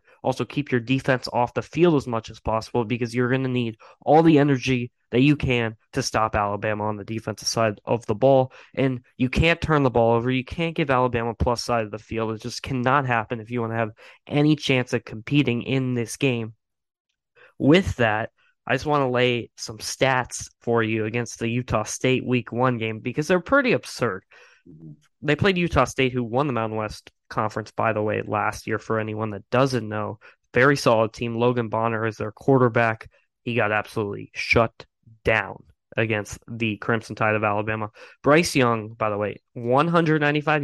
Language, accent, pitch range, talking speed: English, American, 110-140 Hz, 195 wpm